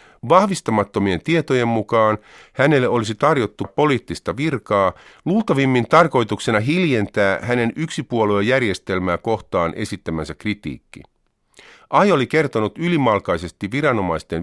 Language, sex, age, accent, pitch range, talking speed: Finnish, male, 50-69, native, 95-135 Hz, 90 wpm